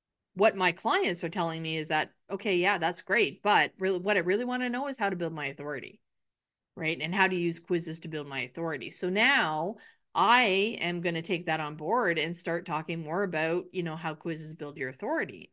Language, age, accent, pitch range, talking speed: English, 30-49, American, 160-205 Hz, 225 wpm